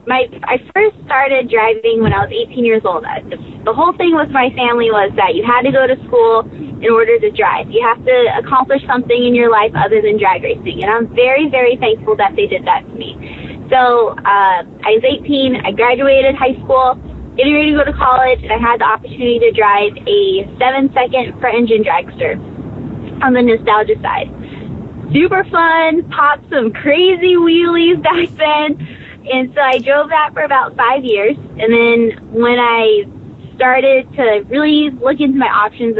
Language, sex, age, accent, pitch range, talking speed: English, female, 20-39, American, 235-295 Hz, 185 wpm